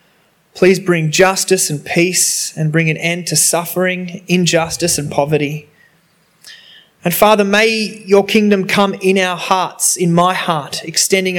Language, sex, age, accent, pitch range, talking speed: English, male, 20-39, Australian, 155-185 Hz, 140 wpm